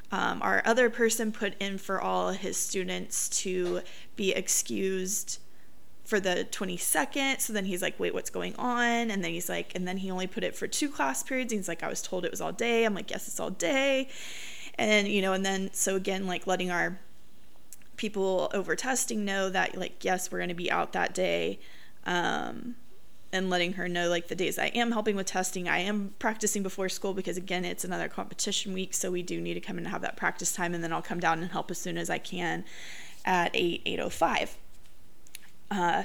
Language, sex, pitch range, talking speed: English, female, 185-230 Hz, 220 wpm